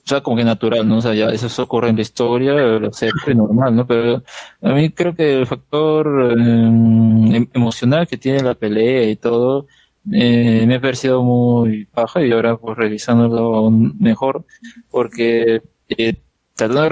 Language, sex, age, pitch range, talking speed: Spanish, male, 20-39, 115-135 Hz, 175 wpm